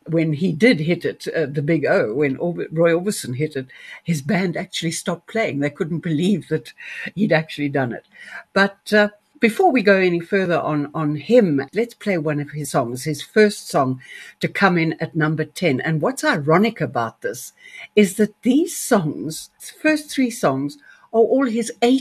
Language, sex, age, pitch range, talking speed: English, female, 60-79, 145-210 Hz, 185 wpm